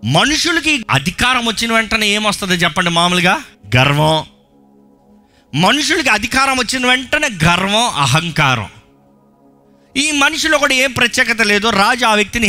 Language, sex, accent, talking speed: Telugu, male, native, 110 wpm